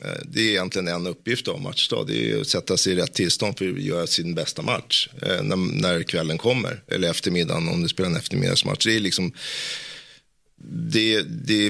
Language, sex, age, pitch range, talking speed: Swedish, male, 30-49, 85-110 Hz, 190 wpm